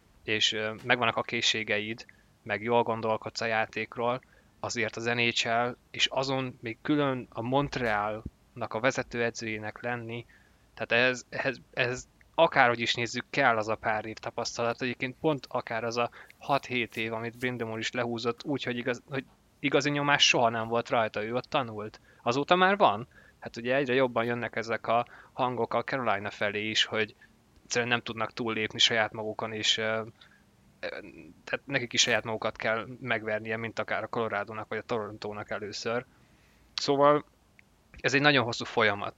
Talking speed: 160 wpm